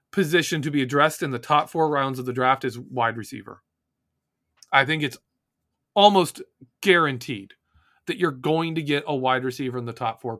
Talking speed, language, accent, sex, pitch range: 185 wpm, English, American, male, 130-185 Hz